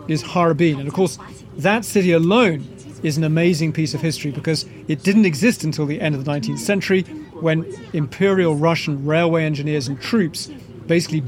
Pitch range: 150-185 Hz